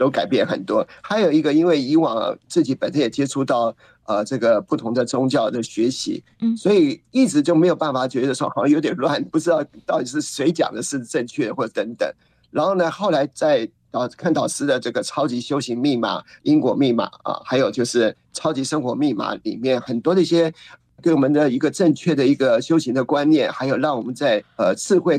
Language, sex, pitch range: Chinese, male, 125-180 Hz